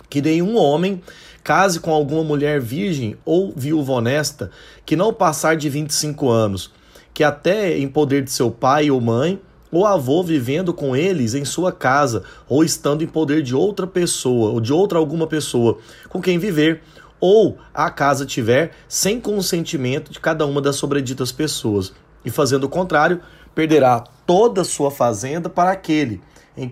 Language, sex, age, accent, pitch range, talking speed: Portuguese, male, 30-49, Brazilian, 140-175 Hz, 160 wpm